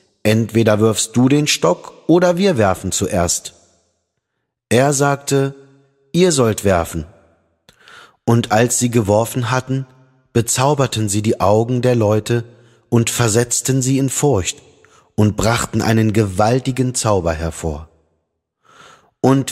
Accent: German